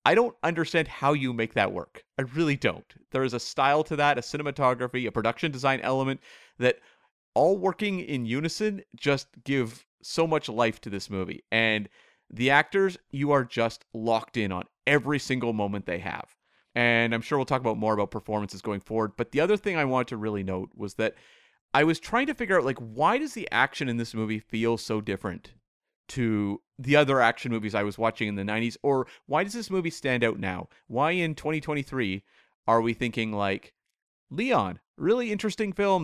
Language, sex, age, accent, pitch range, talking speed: English, male, 30-49, American, 110-155 Hz, 200 wpm